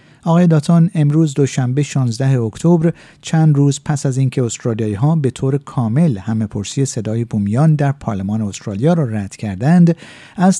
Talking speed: 155 wpm